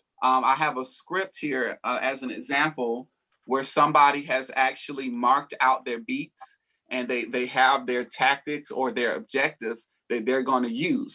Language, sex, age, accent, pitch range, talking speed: English, male, 30-49, American, 130-155 Hz, 165 wpm